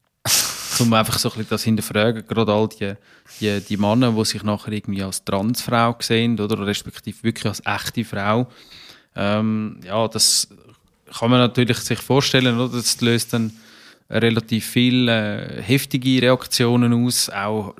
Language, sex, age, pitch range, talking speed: German, male, 20-39, 110-125 Hz, 150 wpm